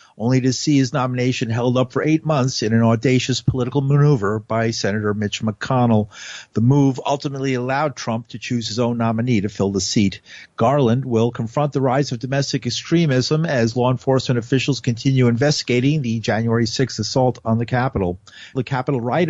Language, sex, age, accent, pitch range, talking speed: English, male, 50-69, American, 115-135 Hz, 175 wpm